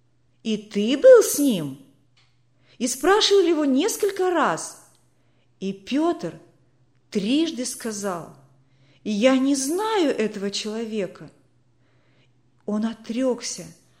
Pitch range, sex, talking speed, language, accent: 175-290 Hz, female, 90 wpm, Russian, native